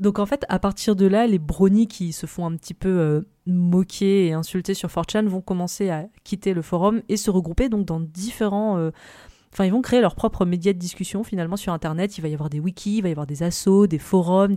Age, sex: 30-49, female